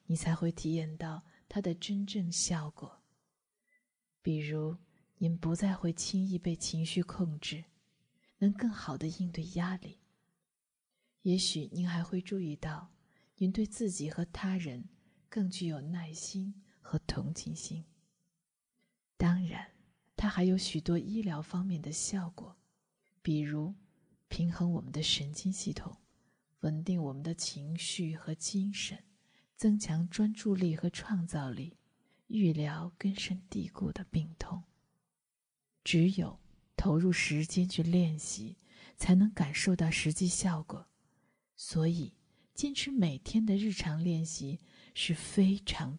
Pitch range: 165-195 Hz